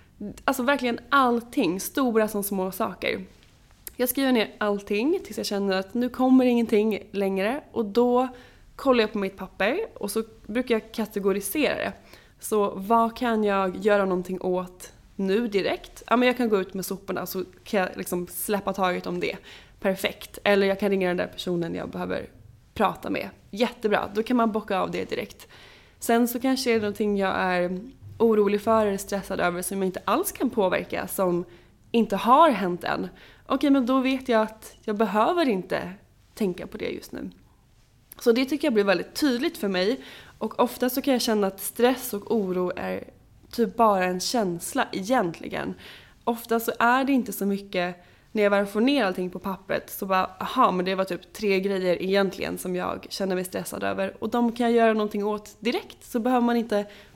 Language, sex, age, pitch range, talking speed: Swedish, female, 20-39, 190-240 Hz, 190 wpm